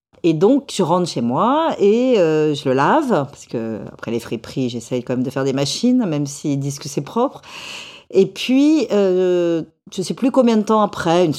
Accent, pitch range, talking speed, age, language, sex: French, 165-265 Hz, 215 wpm, 50-69, French, female